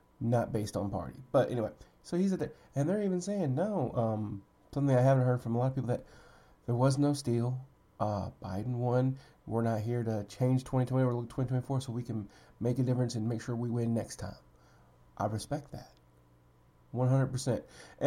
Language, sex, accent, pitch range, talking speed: English, male, American, 110-135 Hz, 195 wpm